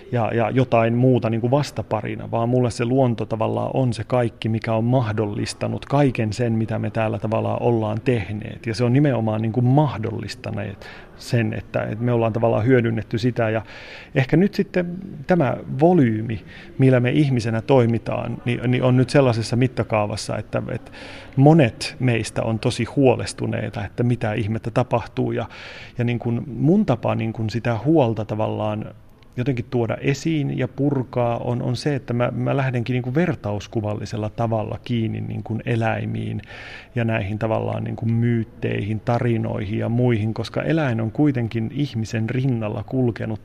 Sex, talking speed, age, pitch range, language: male, 150 wpm, 30-49, 110-125 Hz, Finnish